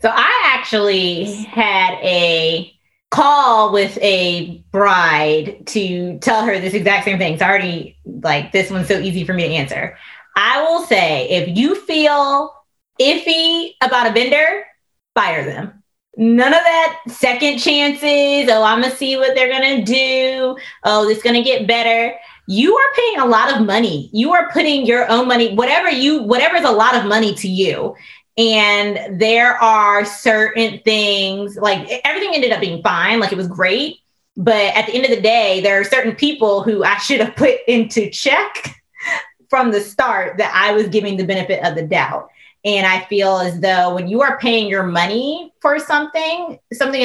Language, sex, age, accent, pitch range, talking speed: English, female, 20-39, American, 200-265 Hz, 175 wpm